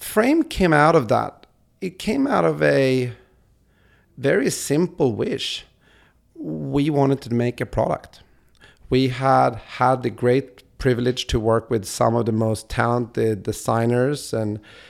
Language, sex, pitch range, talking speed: English, male, 110-135 Hz, 140 wpm